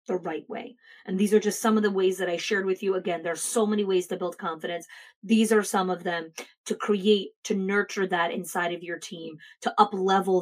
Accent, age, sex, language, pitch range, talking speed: American, 30-49, female, English, 185-220 Hz, 235 wpm